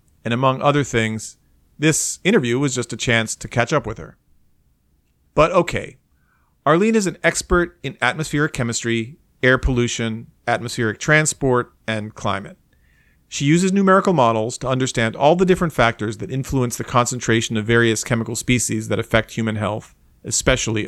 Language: English